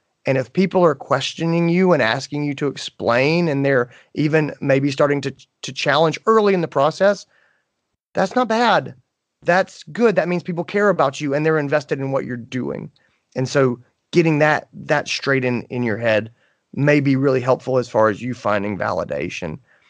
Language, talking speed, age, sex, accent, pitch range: English, 185 wpm, 30-49, male, American, 120-160 Hz